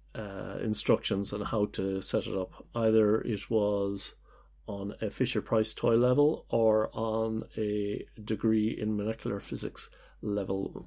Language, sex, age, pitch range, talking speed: English, male, 40-59, 100-110 Hz, 130 wpm